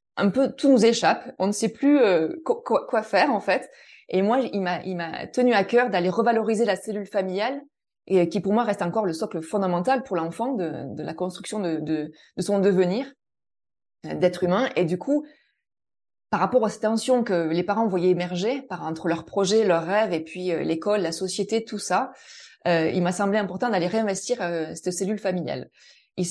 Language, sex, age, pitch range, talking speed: French, female, 20-39, 180-235 Hz, 205 wpm